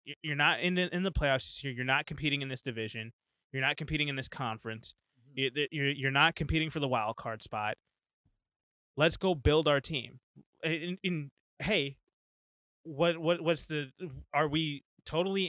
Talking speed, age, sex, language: 165 wpm, 20-39, male, English